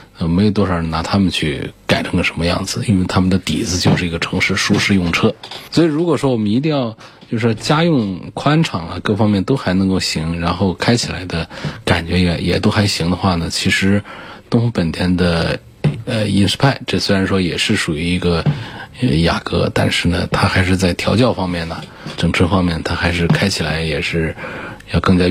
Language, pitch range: Chinese, 90-115 Hz